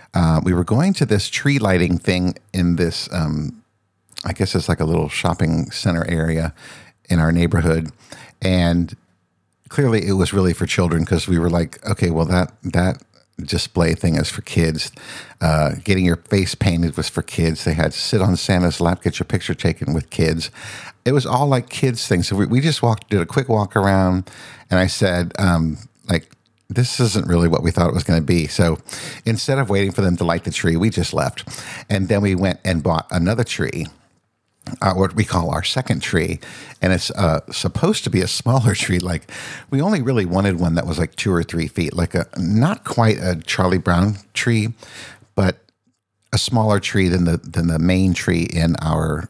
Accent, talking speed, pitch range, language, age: American, 200 wpm, 85-110 Hz, English, 50-69